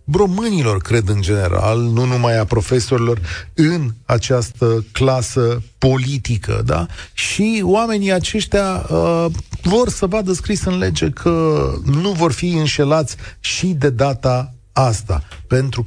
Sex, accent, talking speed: male, native, 115 wpm